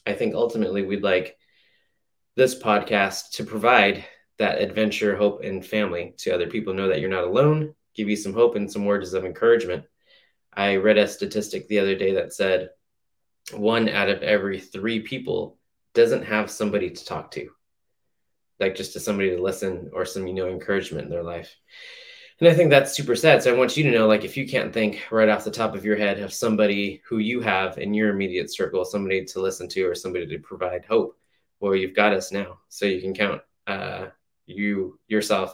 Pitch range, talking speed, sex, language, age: 95-115 Hz, 205 wpm, male, English, 20-39